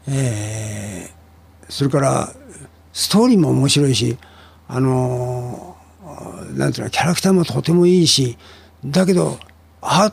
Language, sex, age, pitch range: Japanese, male, 60-79, 115-170 Hz